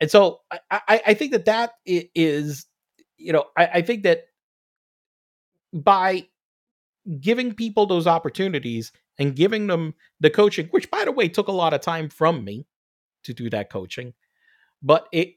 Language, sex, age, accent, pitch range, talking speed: English, male, 40-59, American, 140-195 Hz, 160 wpm